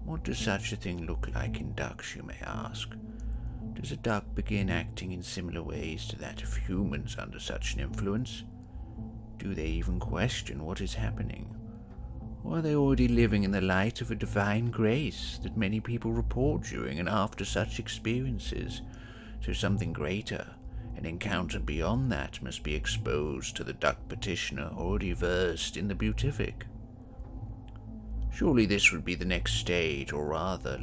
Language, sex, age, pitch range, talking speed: English, male, 50-69, 95-115 Hz, 165 wpm